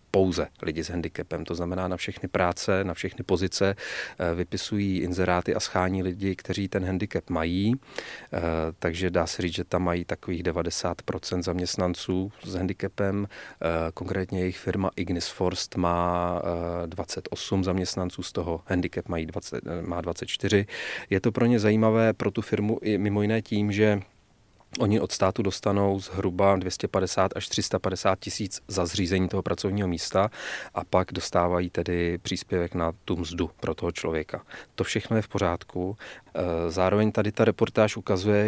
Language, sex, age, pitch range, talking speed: Czech, male, 30-49, 90-100 Hz, 150 wpm